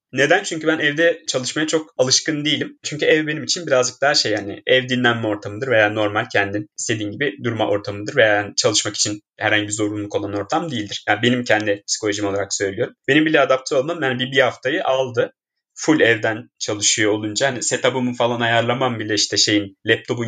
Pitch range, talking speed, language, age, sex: 105-150 Hz, 185 wpm, Turkish, 30-49, male